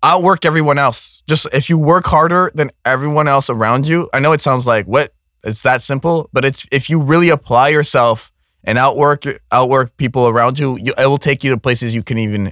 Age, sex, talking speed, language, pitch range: 20-39, male, 215 wpm, English, 110-150 Hz